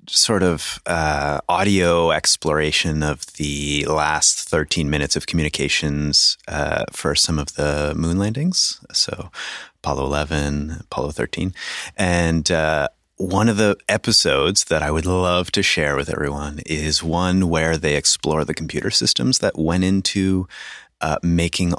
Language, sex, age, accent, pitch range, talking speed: English, male, 30-49, American, 75-90 Hz, 140 wpm